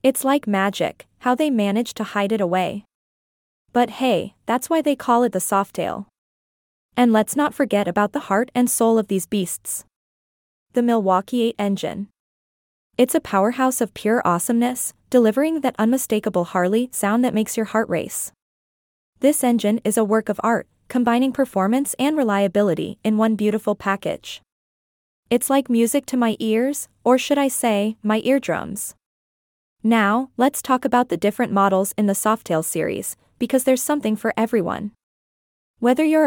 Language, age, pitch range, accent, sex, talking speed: English, 20-39, 200-255 Hz, American, female, 160 wpm